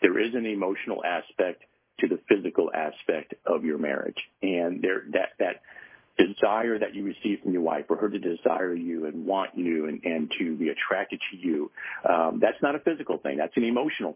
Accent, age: American, 50-69